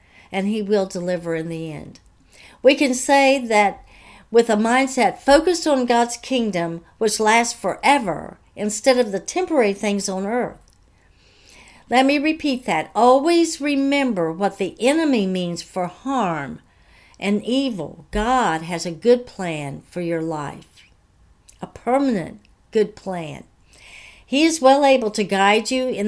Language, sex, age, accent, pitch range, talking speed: English, female, 60-79, American, 180-255 Hz, 145 wpm